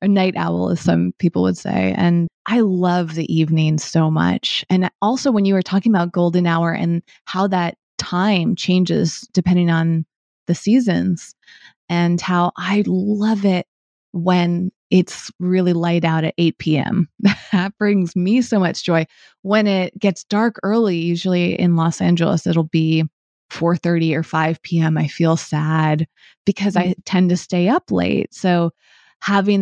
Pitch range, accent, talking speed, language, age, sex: 165-190 Hz, American, 160 wpm, English, 20-39, female